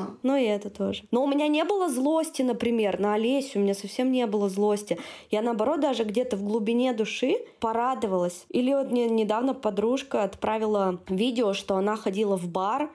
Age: 20-39